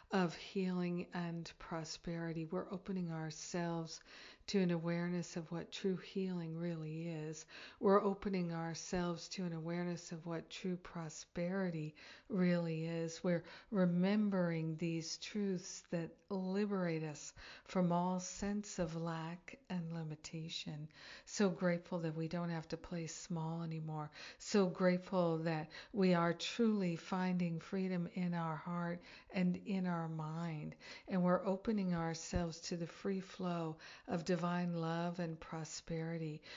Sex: female